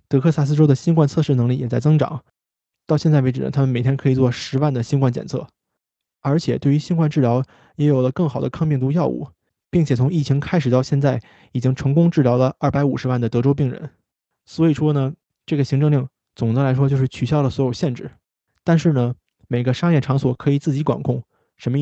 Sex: male